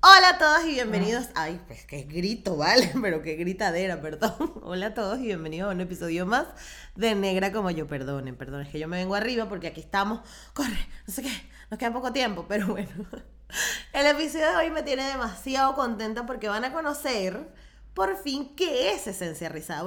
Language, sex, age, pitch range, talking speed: Spanish, female, 20-39, 180-245 Hz, 200 wpm